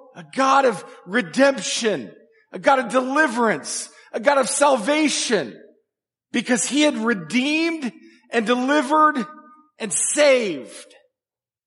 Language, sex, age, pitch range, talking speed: English, male, 40-59, 185-285 Hz, 105 wpm